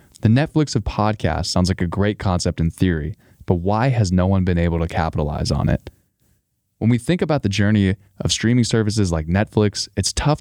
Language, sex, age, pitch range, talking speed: English, male, 20-39, 90-110 Hz, 200 wpm